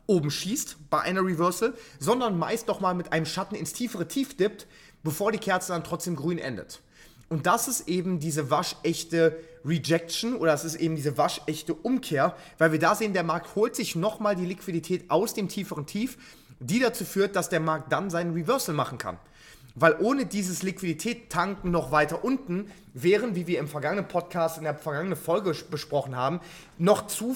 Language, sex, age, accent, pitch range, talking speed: German, male, 30-49, German, 155-190 Hz, 185 wpm